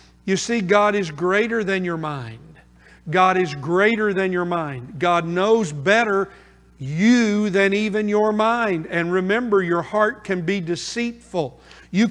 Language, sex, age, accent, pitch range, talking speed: English, male, 50-69, American, 155-205 Hz, 150 wpm